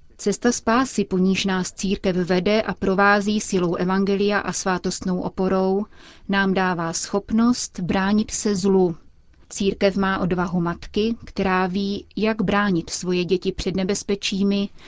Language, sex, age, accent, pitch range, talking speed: Czech, female, 30-49, native, 185-205 Hz, 125 wpm